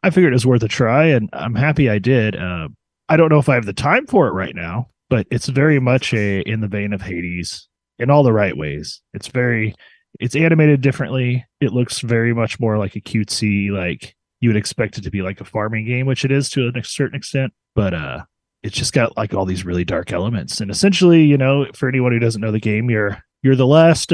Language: English